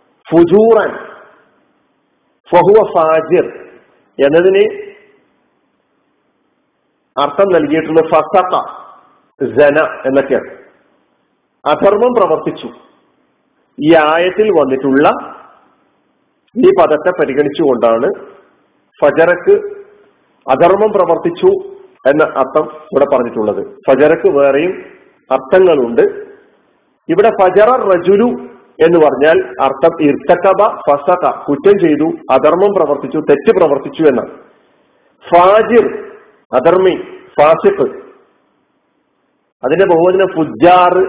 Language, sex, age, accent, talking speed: Malayalam, male, 50-69, native, 65 wpm